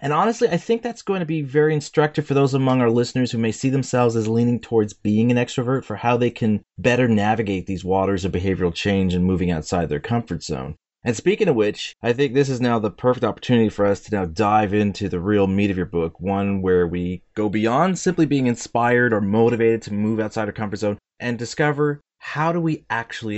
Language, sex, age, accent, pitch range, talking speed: English, male, 30-49, American, 105-150 Hz, 225 wpm